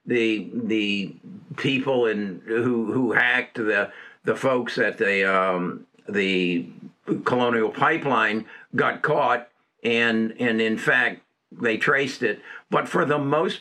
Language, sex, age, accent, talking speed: English, male, 60-79, American, 130 wpm